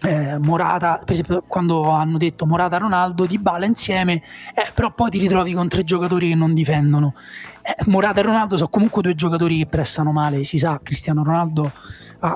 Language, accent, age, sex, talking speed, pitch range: Italian, native, 20-39, male, 180 wpm, 155-185 Hz